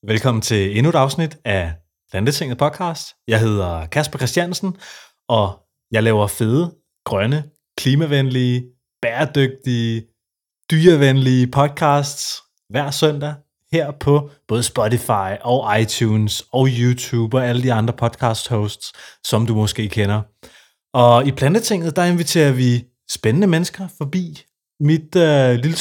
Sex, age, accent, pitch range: male, 30-49, native, 110-150 Hz